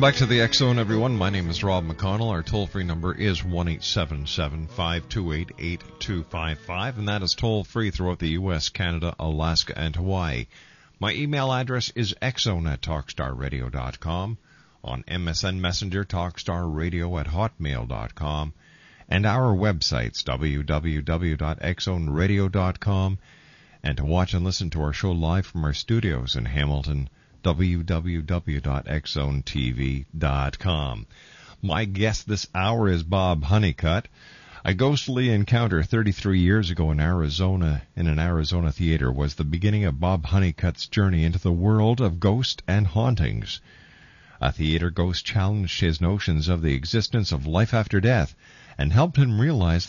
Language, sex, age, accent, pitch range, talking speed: English, male, 50-69, American, 80-105 Hz, 135 wpm